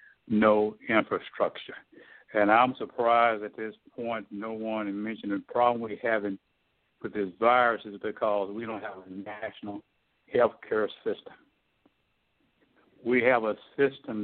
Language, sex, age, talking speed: English, male, 60-79, 135 wpm